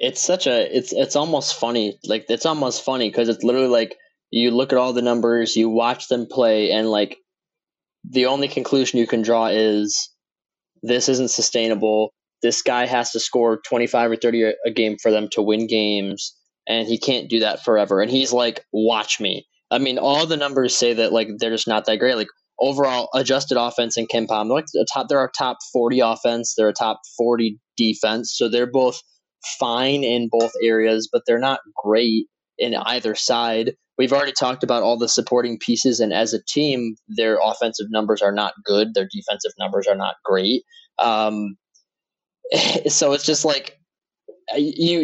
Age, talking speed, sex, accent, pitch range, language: 10-29, 190 wpm, male, American, 110-140 Hz, English